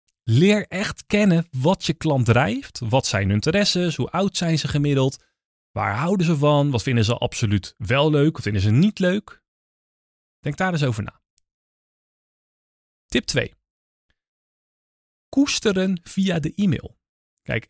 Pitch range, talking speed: 115-170 Hz, 145 wpm